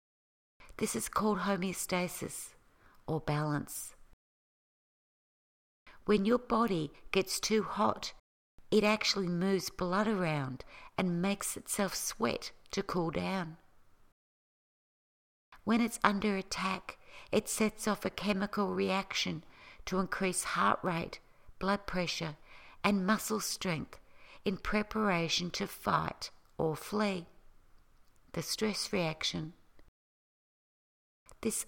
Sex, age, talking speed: female, 60-79, 100 wpm